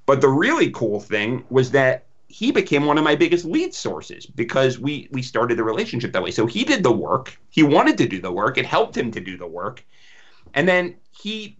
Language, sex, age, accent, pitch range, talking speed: English, male, 40-59, American, 125-160 Hz, 230 wpm